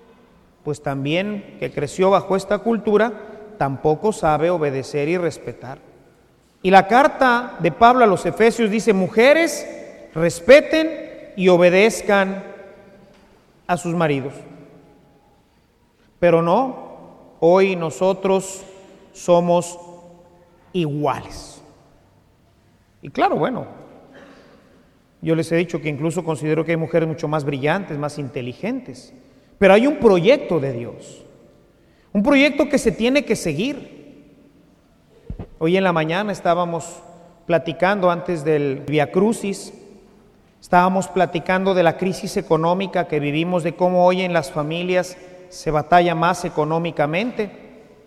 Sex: male